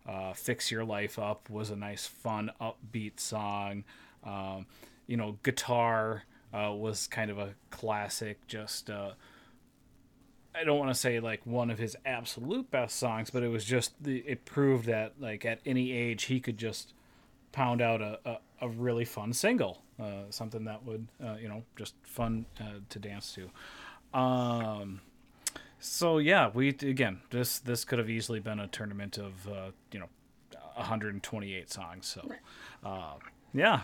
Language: English